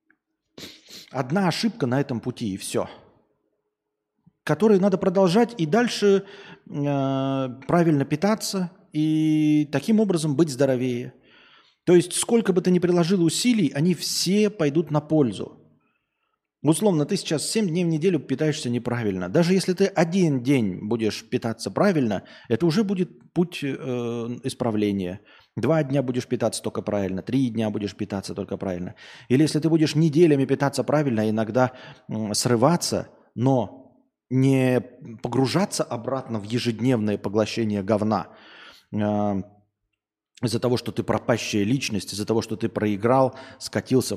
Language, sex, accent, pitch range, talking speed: Russian, male, native, 115-170 Hz, 135 wpm